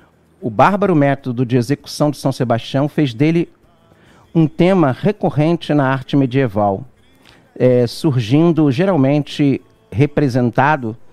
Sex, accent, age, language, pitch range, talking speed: male, Brazilian, 50-69, Portuguese, 120-160 Hz, 100 wpm